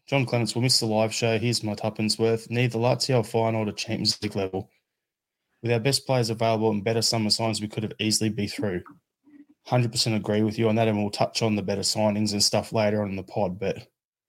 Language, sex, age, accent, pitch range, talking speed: English, male, 20-39, Australian, 105-120 Hz, 230 wpm